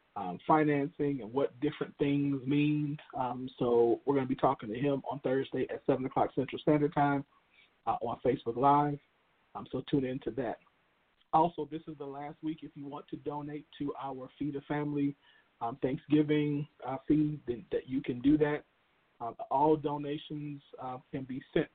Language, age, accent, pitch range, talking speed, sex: English, 40-59, American, 130-150 Hz, 180 wpm, male